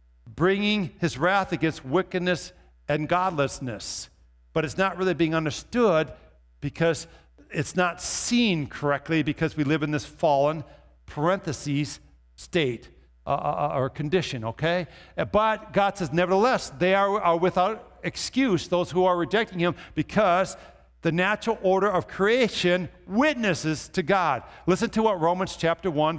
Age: 60-79